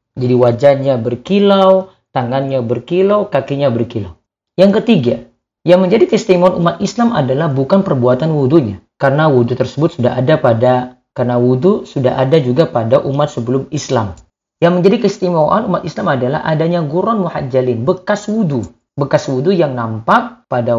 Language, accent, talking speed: Indonesian, native, 140 wpm